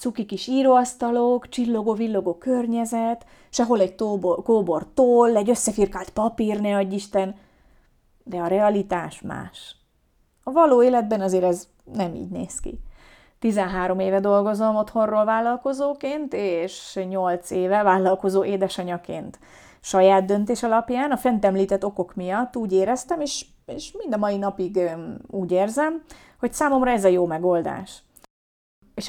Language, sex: Hungarian, female